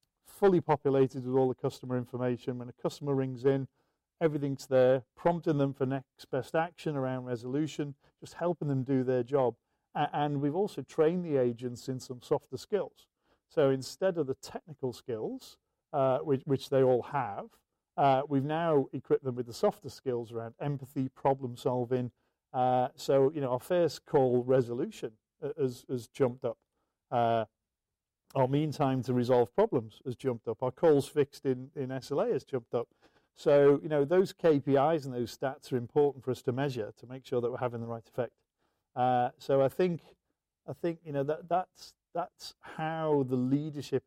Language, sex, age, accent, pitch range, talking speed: English, male, 40-59, British, 125-145 Hz, 180 wpm